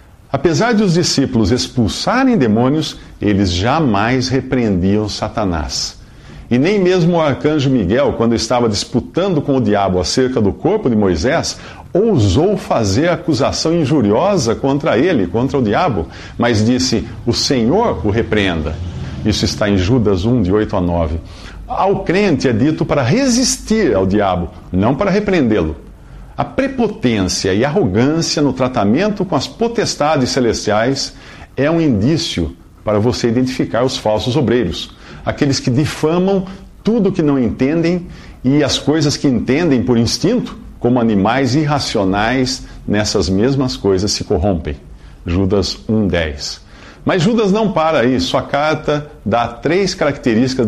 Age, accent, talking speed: 50-69, Brazilian, 135 wpm